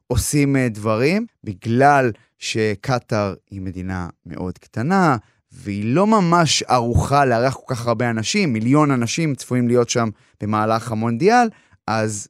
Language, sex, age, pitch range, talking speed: Hebrew, male, 20-39, 115-155 Hz, 120 wpm